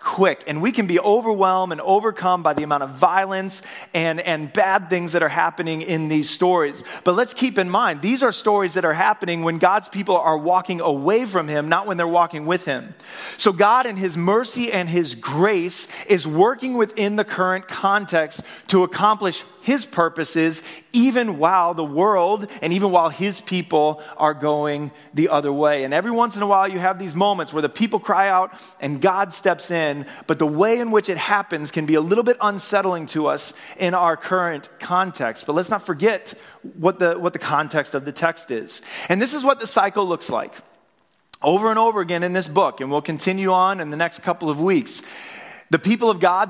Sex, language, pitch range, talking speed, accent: male, English, 155-195 Hz, 205 wpm, American